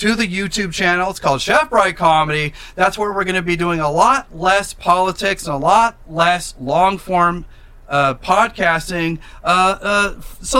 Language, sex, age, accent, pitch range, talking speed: English, male, 40-59, American, 155-205 Hz, 160 wpm